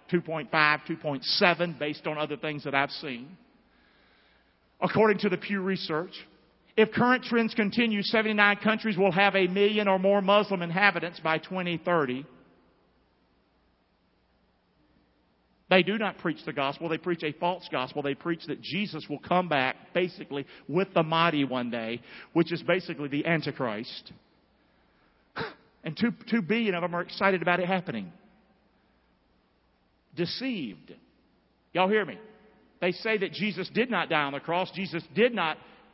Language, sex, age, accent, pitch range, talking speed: English, male, 50-69, American, 155-210 Hz, 145 wpm